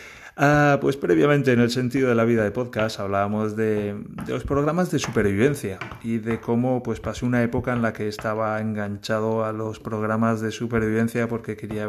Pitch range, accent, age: 110-130 Hz, Spanish, 30-49